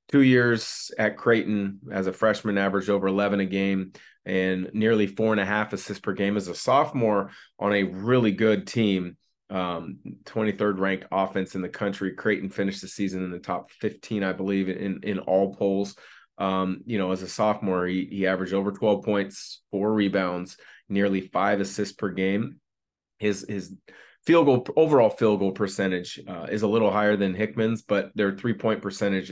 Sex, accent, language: male, American, English